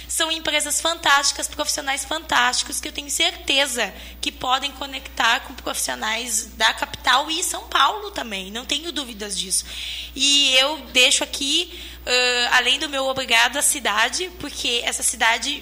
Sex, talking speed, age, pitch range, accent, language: female, 145 wpm, 20-39, 240-285 Hz, Brazilian, Portuguese